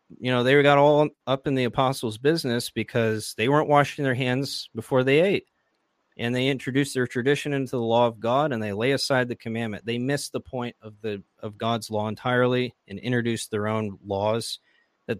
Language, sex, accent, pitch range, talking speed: English, male, American, 105-125 Hz, 200 wpm